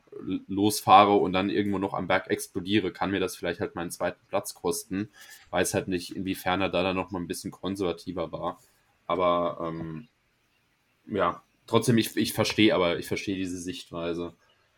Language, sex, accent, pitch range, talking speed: German, male, German, 105-125 Hz, 165 wpm